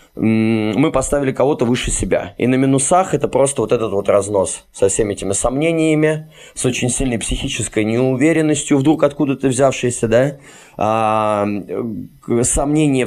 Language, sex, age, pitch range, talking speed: Russian, male, 20-39, 115-140 Hz, 135 wpm